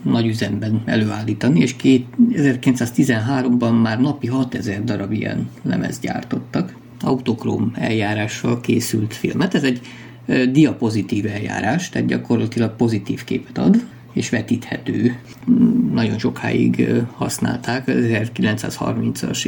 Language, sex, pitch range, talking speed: Hungarian, male, 100-125 Hz, 100 wpm